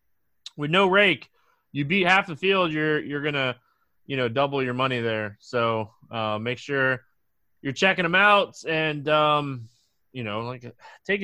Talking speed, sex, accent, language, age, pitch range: 170 wpm, male, American, English, 20-39, 120-155 Hz